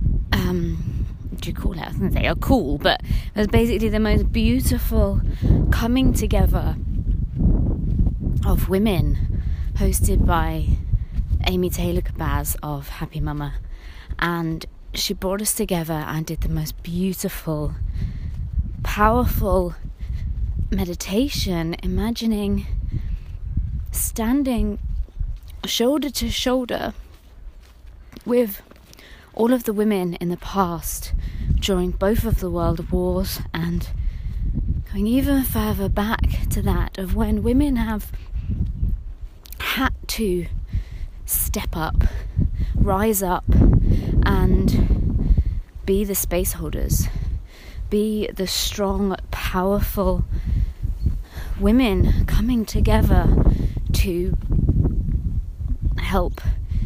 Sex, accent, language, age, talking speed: female, British, English, 20-39, 90 wpm